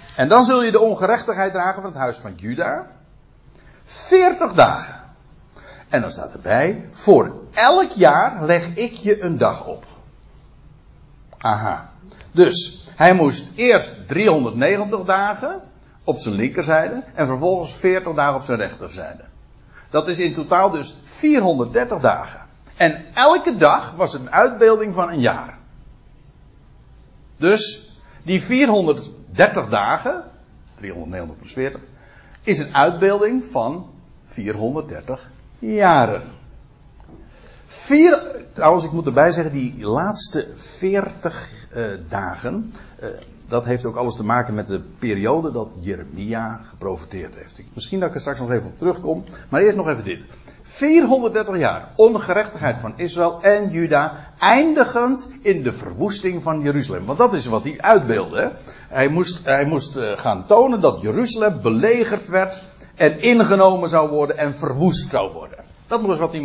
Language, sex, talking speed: Dutch, male, 135 wpm